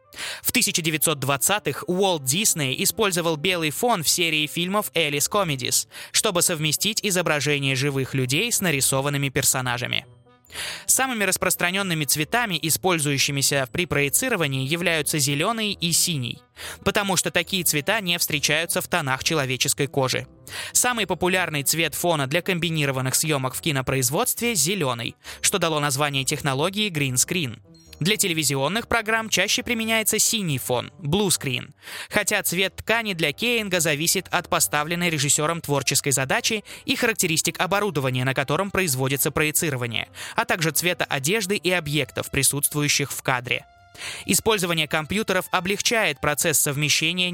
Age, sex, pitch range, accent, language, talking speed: 20-39, male, 140-190 Hz, native, Russian, 120 wpm